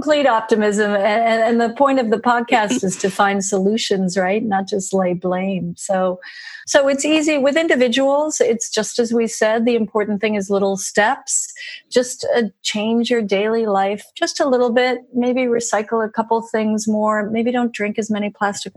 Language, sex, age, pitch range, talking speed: English, female, 40-59, 190-235 Hz, 175 wpm